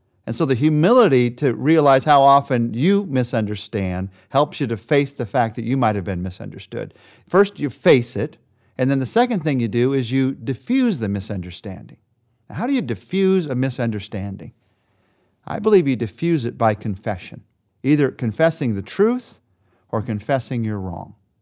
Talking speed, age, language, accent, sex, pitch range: 165 wpm, 50-69, English, American, male, 115-160 Hz